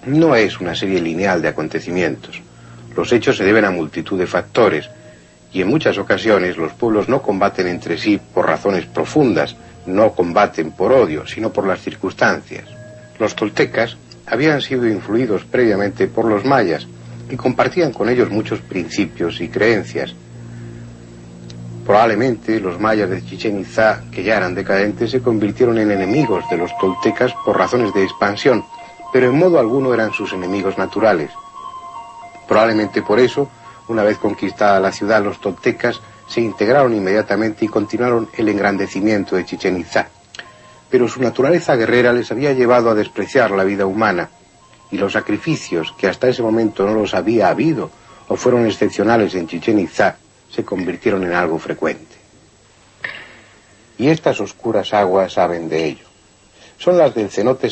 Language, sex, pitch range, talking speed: Spanish, male, 90-120 Hz, 155 wpm